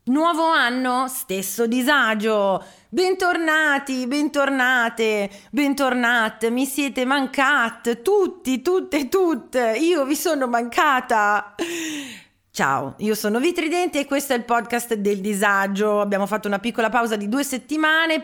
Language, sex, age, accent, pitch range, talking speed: Italian, female, 30-49, native, 215-280 Hz, 120 wpm